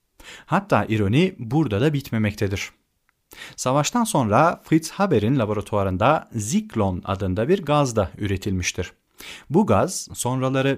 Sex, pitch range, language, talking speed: male, 100-150 Hz, Turkish, 105 wpm